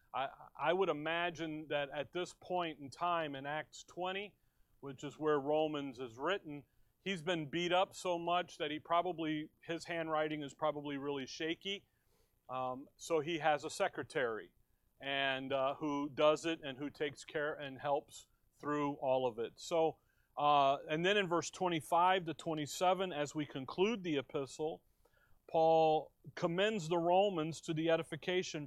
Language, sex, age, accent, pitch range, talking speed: English, male, 40-59, American, 140-170 Hz, 155 wpm